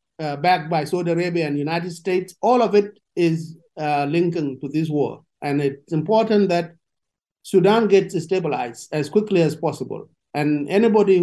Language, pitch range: English, 160-195 Hz